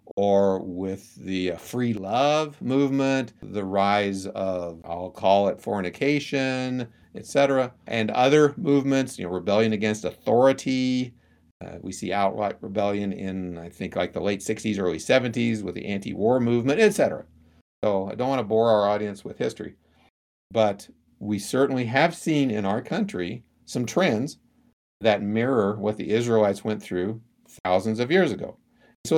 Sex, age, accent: male, 50-69, American